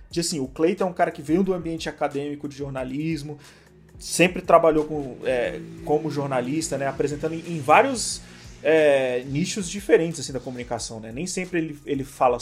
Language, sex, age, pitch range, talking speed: Portuguese, male, 30-49, 140-175 Hz, 180 wpm